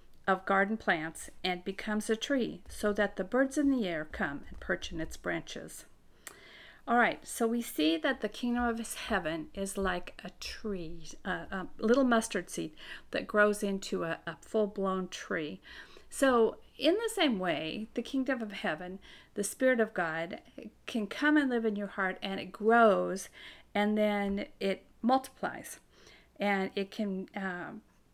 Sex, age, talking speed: female, 50-69, 165 wpm